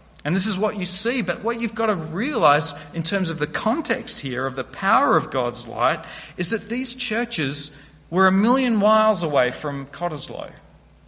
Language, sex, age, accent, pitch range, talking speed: English, male, 40-59, Australian, 150-215 Hz, 190 wpm